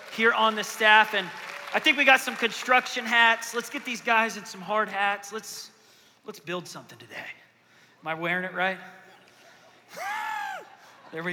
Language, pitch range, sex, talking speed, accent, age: English, 195-270 Hz, male, 165 wpm, American, 30-49